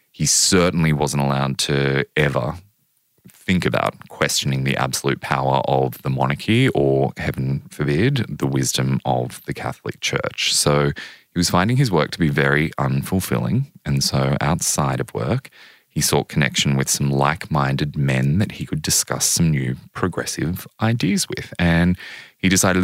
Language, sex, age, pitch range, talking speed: English, male, 20-39, 70-80 Hz, 150 wpm